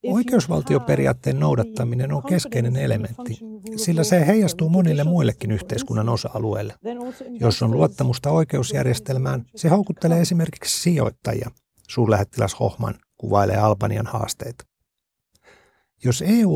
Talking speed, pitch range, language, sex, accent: 100 wpm, 115-150 Hz, Finnish, male, native